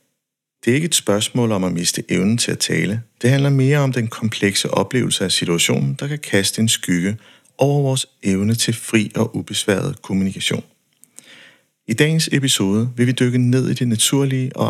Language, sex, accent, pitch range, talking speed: Danish, male, native, 100-125 Hz, 185 wpm